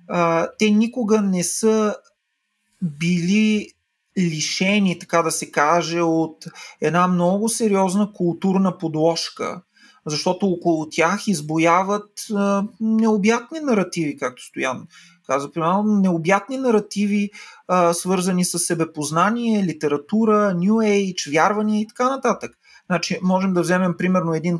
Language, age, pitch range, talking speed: Bulgarian, 30-49, 165-215 Hz, 110 wpm